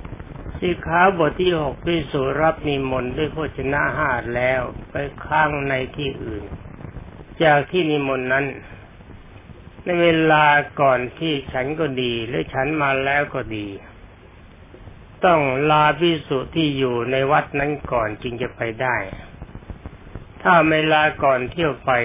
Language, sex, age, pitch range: Thai, male, 60-79, 115-150 Hz